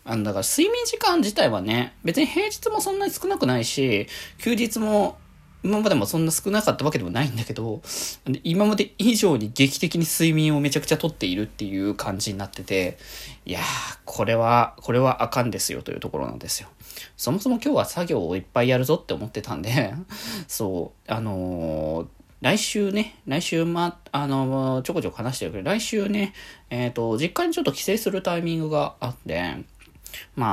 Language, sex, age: Japanese, male, 20-39